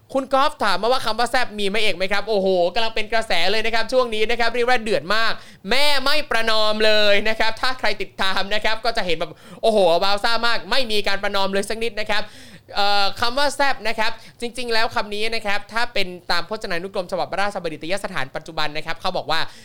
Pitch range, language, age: 175-225 Hz, Thai, 20-39